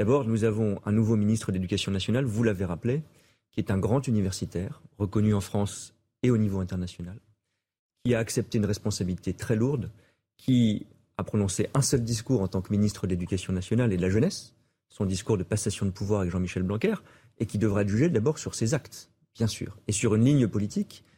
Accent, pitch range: French, 100-125 Hz